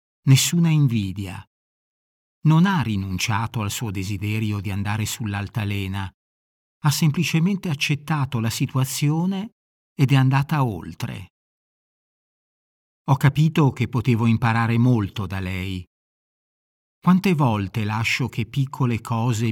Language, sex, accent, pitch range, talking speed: Italian, male, native, 105-145 Hz, 105 wpm